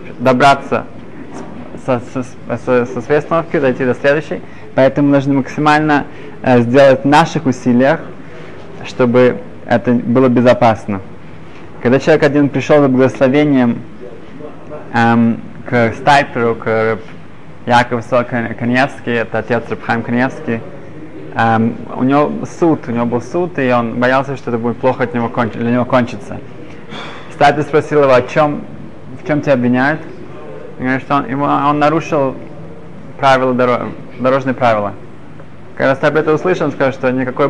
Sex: male